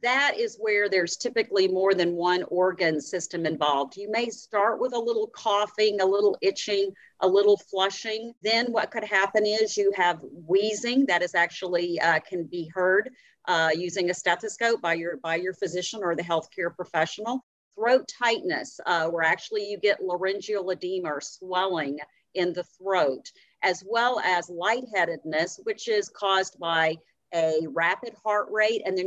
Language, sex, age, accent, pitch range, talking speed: English, female, 50-69, American, 175-230 Hz, 165 wpm